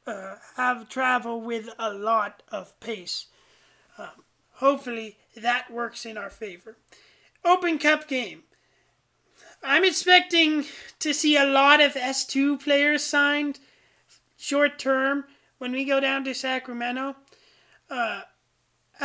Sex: male